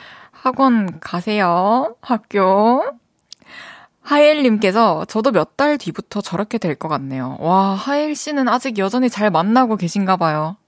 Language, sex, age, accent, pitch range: Korean, female, 20-39, native, 175-235 Hz